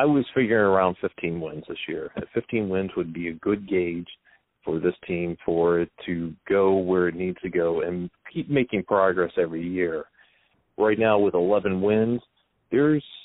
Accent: American